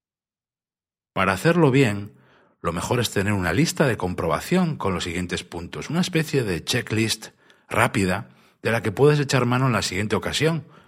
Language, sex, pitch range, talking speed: Spanish, male, 90-135 Hz, 165 wpm